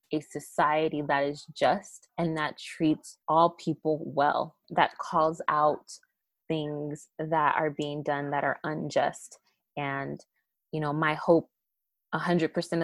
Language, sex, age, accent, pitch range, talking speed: English, female, 20-39, American, 145-165 Hz, 140 wpm